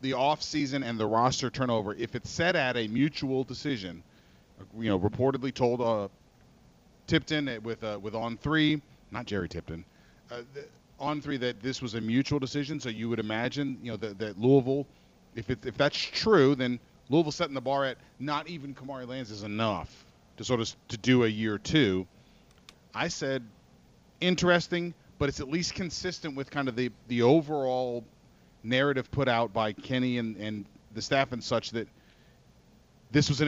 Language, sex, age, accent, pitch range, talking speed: English, male, 40-59, American, 110-140 Hz, 180 wpm